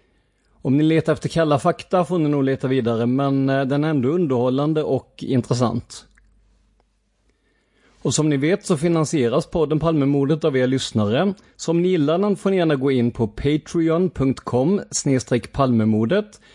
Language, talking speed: Swedish, 145 wpm